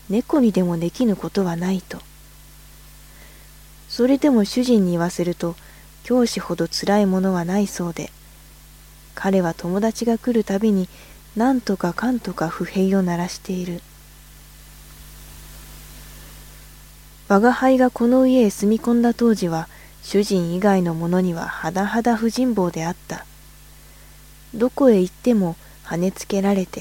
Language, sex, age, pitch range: English, female, 20-39, 175-225 Hz